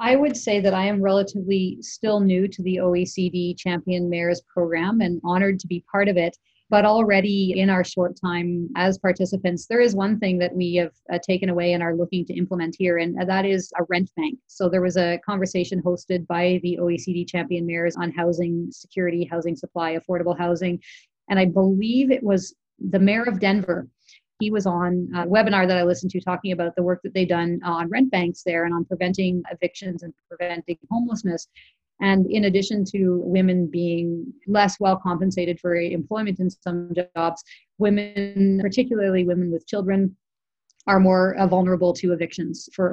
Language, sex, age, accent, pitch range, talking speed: English, female, 30-49, American, 175-195 Hz, 185 wpm